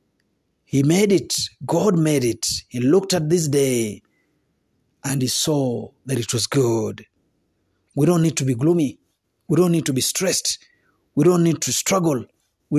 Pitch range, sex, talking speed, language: 125-165 Hz, male, 170 wpm, Swahili